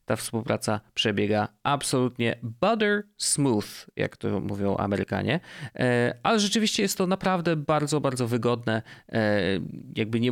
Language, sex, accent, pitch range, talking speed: Polish, male, native, 105-125 Hz, 110 wpm